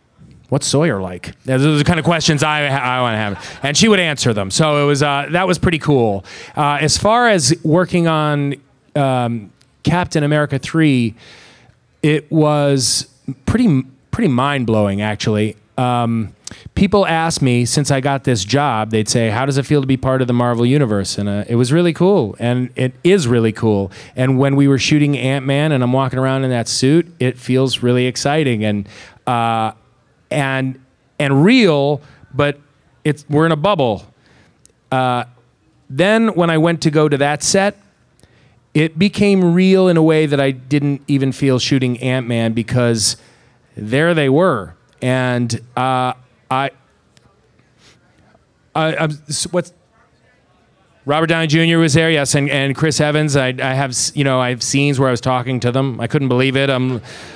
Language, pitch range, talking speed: English, 125-150 Hz, 175 wpm